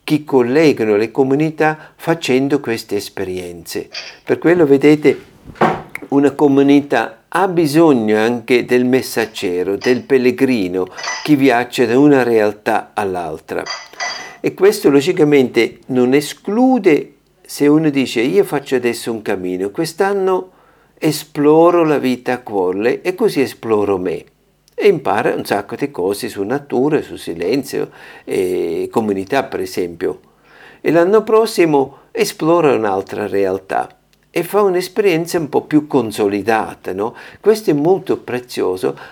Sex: male